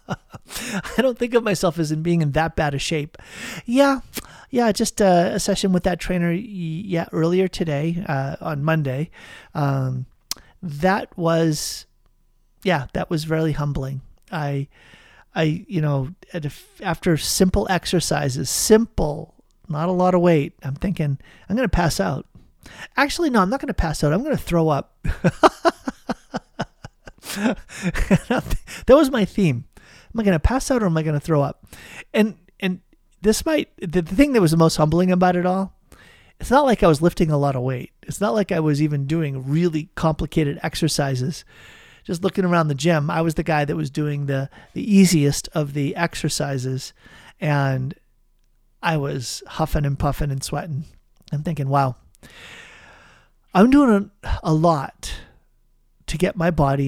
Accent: American